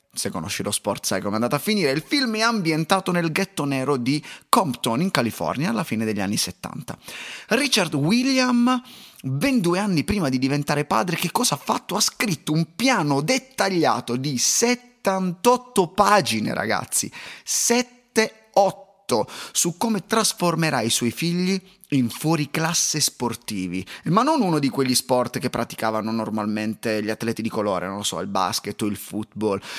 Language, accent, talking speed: Italian, native, 160 wpm